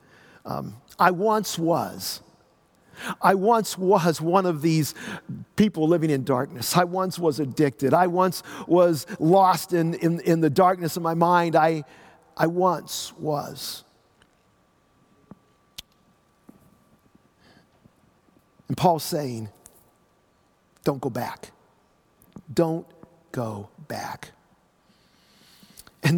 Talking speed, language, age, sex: 100 wpm, English, 50-69, male